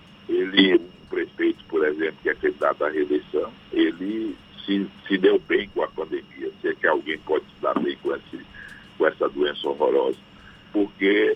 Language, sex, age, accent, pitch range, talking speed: Portuguese, male, 60-79, Brazilian, 330-415 Hz, 170 wpm